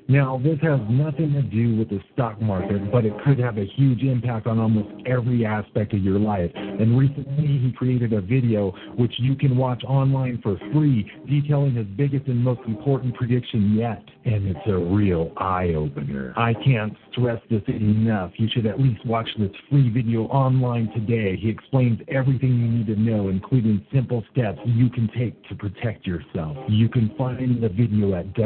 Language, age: English, 50-69